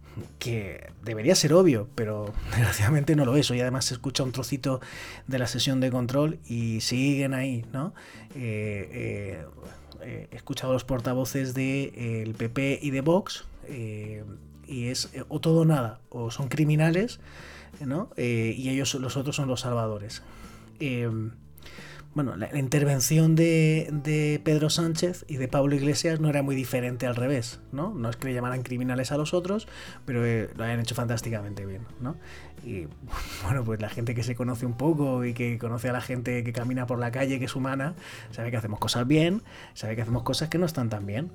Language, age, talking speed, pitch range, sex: Spanish, 30-49, 195 wpm, 115-145 Hz, male